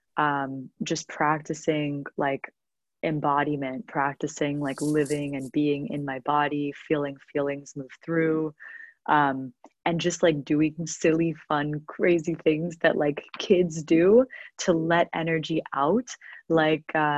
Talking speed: 120 wpm